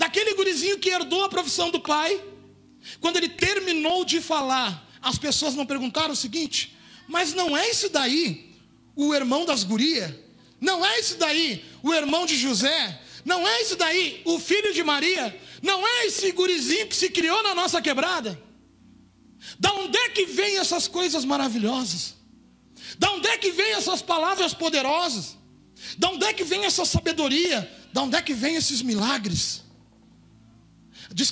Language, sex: Portuguese, male